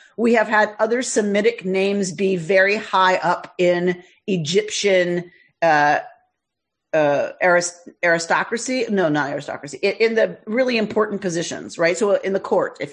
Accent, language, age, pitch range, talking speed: American, English, 40-59, 175-240 Hz, 135 wpm